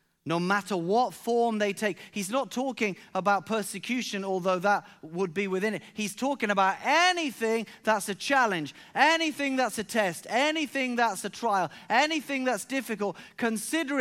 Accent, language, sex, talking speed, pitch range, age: British, English, male, 155 wpm, 210-265 Hz, 30-49